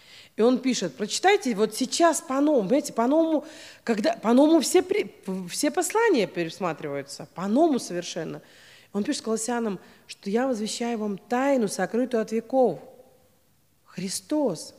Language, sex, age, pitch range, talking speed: Russian, female, 30-49, 215-285 Hz, 115 wpm